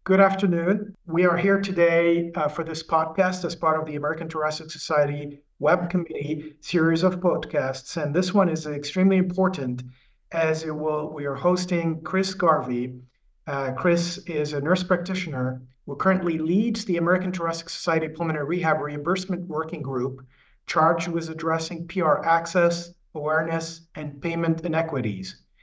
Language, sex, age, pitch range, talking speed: English, male, 40-59, 155-180 Hz, 150 wpm